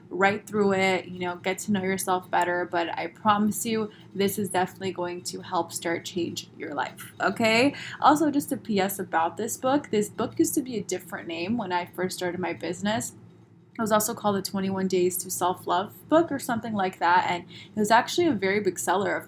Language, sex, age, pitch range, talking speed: English, female, 20-39, 185-230 Hz, 215 wpm